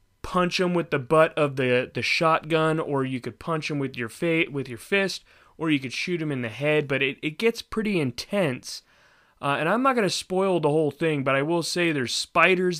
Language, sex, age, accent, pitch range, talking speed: English, male, 30-49, American, 125-155 Hz, 230 wpm